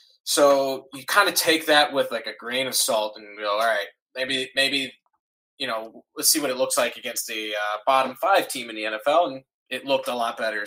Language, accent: English, American